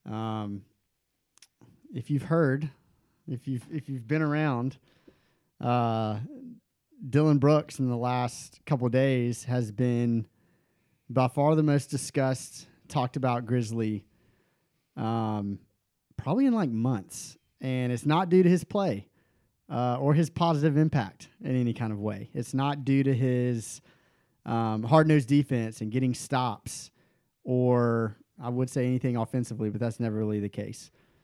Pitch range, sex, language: 110-140 Hz, male, English